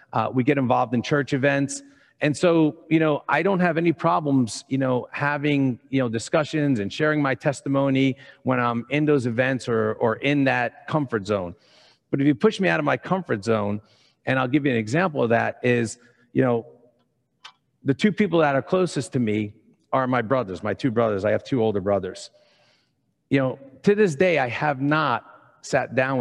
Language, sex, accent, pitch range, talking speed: English, male, American, 115-145 Hz, 200 wpm